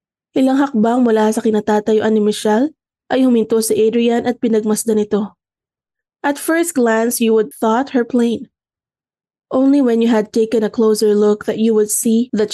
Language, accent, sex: Filipino, native, female